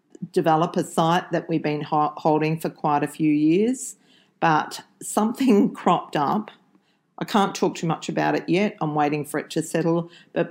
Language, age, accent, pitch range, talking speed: English, 50-69, Australian, 150-180 Hz, 170 wpm